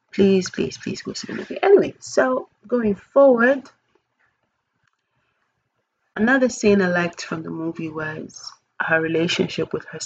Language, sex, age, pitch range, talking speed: English, female, 30-49, 170-210 Hz, 135 wpm